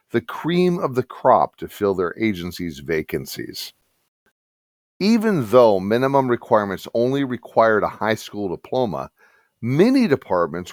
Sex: male